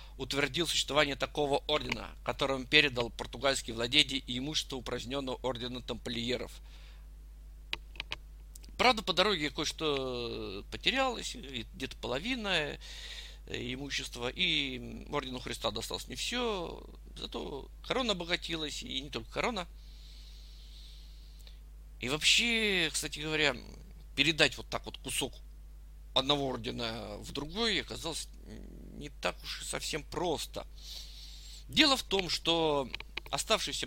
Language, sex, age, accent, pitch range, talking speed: Russian, male, 50-69, native, 115-160 Hz, 105 wpm